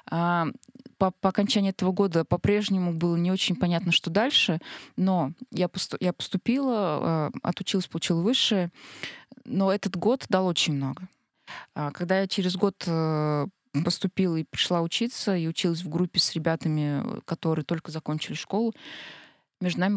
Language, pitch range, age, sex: Russian, 160-195 Hz, 20-39, female